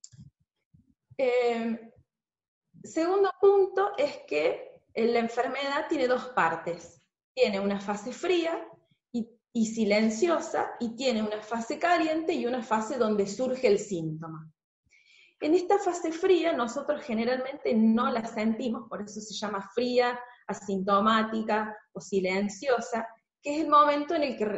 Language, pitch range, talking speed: Spanish, 195-255 Hz, 130 wpm